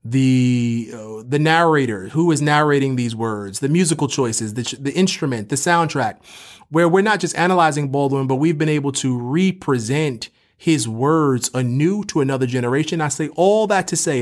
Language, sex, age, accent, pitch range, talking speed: English, male, 30-49, American, 130-160 Hz, 175 wpm